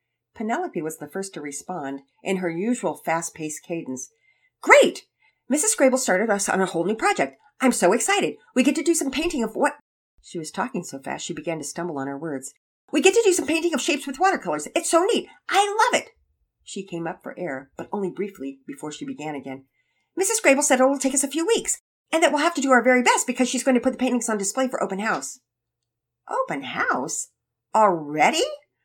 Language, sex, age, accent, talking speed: English, female, 50-69, American, 220 wpm